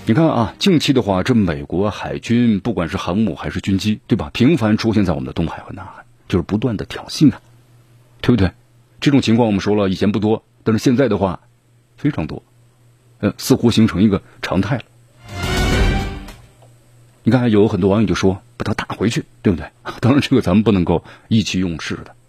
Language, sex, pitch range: Chinese, male, 105-125 Hz